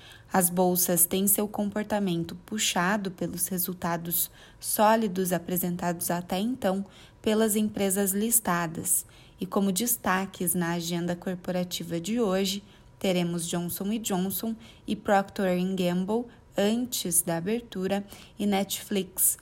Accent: Brazilian